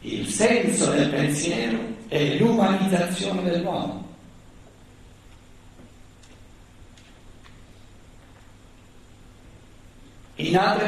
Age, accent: 60-79, native